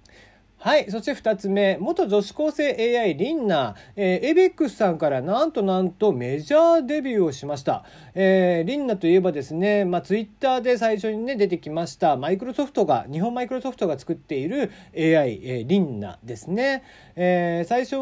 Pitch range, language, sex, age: 145-240 Hz, Japanese, male, 40-59